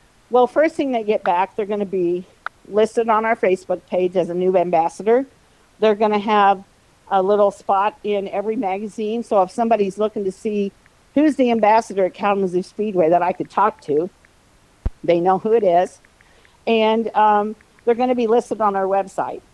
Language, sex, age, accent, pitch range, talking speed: English, female, 50-69, American, 185-225 Hz, 185 wpm